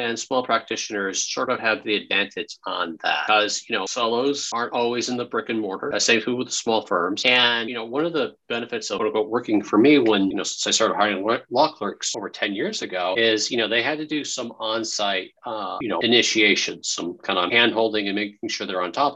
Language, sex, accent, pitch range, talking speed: English, male, American, 110-130 Hz, 235 wpm